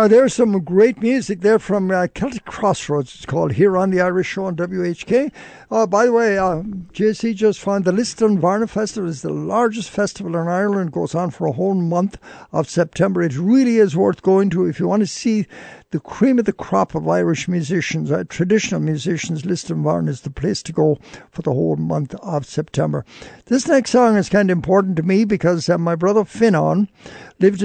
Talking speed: 210 wpm